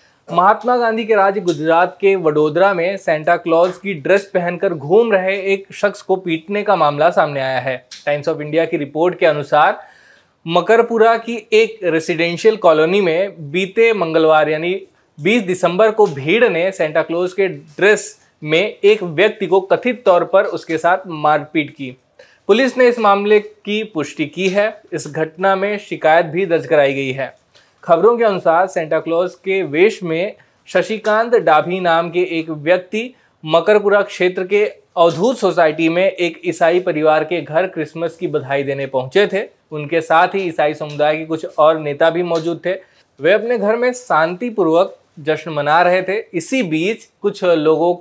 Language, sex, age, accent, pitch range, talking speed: Hindi, male, 20-39, native, 160-200 Hz, 165 wpm